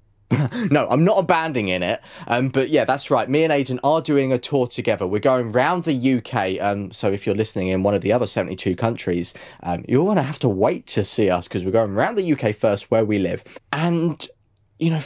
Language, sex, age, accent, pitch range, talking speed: English, male, 20-39, British, 105-160 Hz, 230 wpm